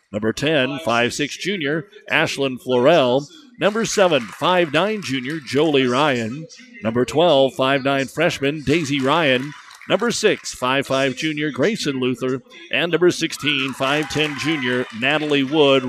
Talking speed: 125 wpm